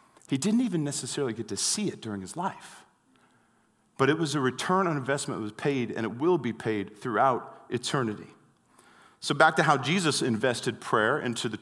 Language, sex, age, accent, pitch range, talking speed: English, male, 40-59, American, 120-160 Hz, 190 wpm